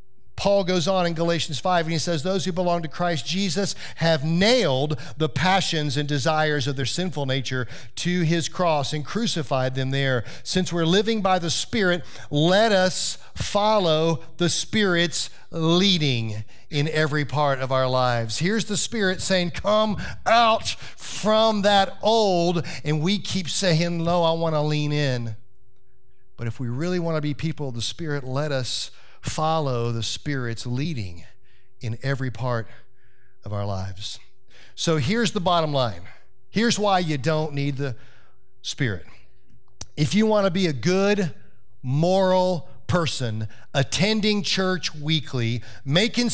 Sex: male